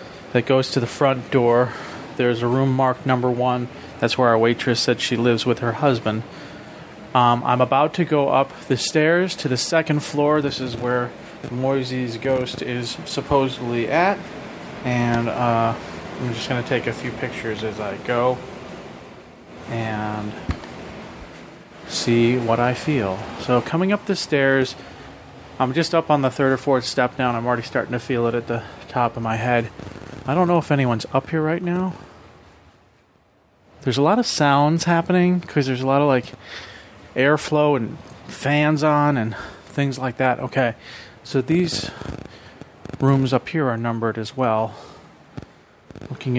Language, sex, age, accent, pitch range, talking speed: English, male, 30-49, American, 115-135 Hz, 165 wpm